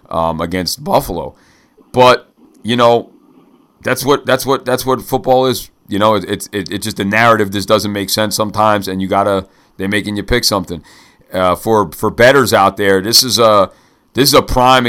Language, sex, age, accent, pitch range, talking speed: English, male, 40-59, American, 100-115 Hz, 200 wpm